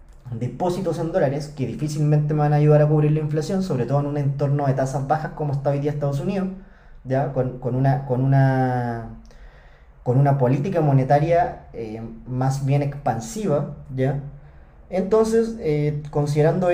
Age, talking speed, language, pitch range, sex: 20-39, 160 wpm, Spanish, 130-165 Hz, male